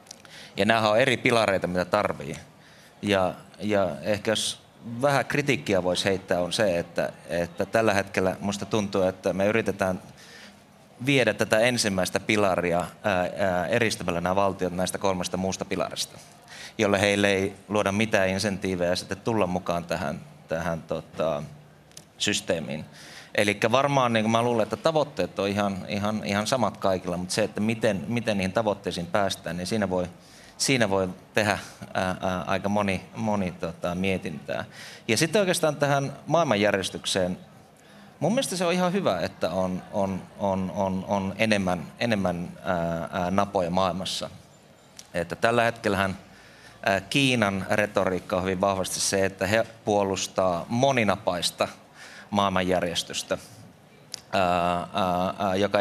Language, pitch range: Finnish, 90-110 Hz